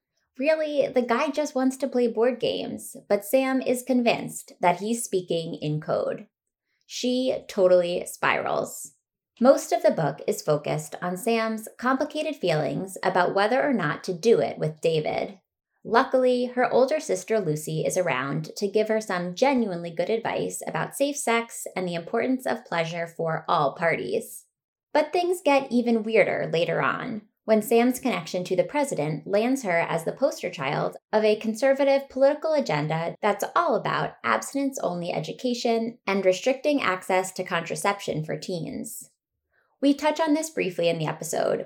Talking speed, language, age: 155 wpm, English, 20-39